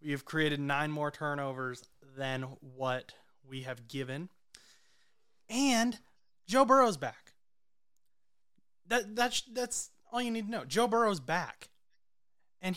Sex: male